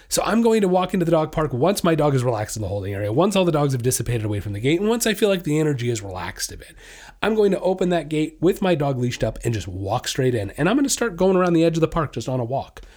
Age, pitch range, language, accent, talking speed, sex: 30-49, 140-185 Hz, English, American, 330 wpm, male